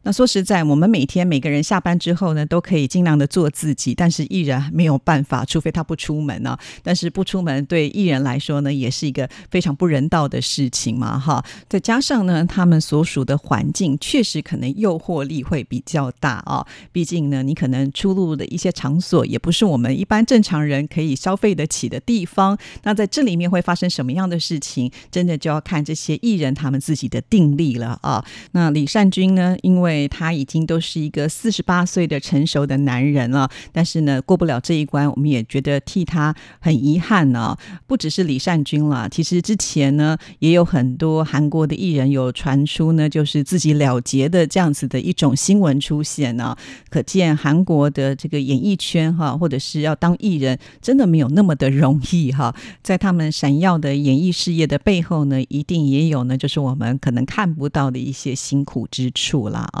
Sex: female